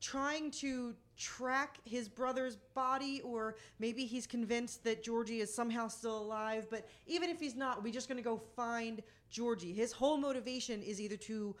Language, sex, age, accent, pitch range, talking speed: English, female, 30-49, American, 220-260 Hz, 175 wpm